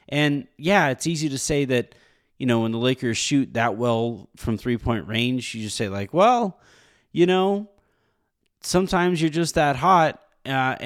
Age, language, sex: 30-49, English, male